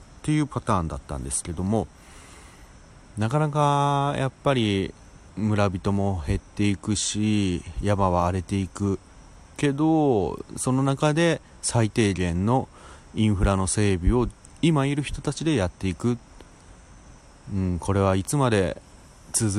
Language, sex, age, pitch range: Japanese, male, 30-49, 90-125 Hz